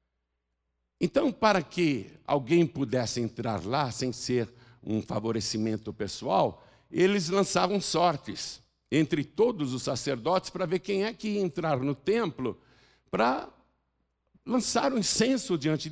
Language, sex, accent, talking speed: Portuguese, male, Brazilian, 125 wpm